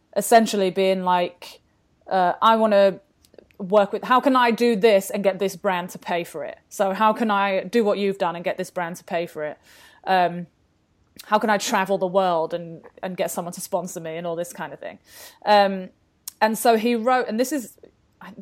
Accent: British